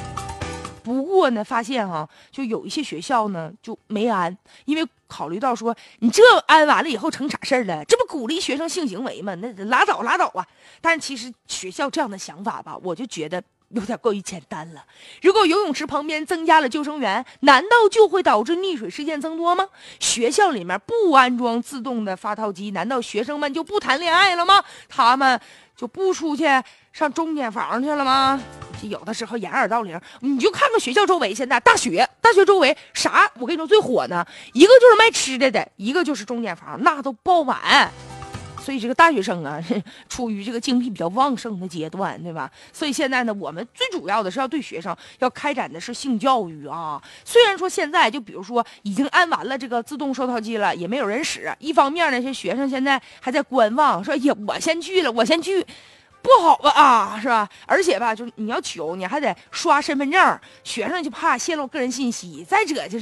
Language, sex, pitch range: Chinese, female, 230-330 Hz